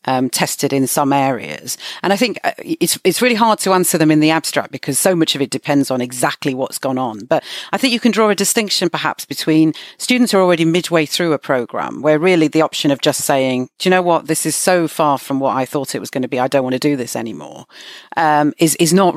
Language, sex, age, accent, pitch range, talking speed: English, female, 40-59, British, 140-170 Hz, 255 wpm